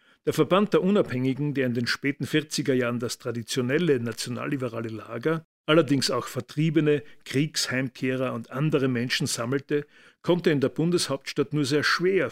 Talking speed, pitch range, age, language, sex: 140 wpm, 125-150 Hz, 50-69, German, male